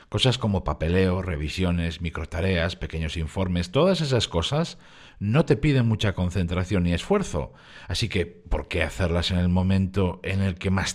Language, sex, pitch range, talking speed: Spanish, male, 85-120 Hz, 160 wpm